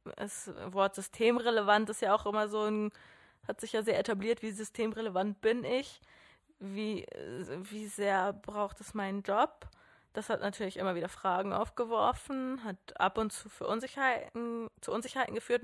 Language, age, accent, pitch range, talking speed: German, 20-39, German, 200-230 Hz, 155 wpm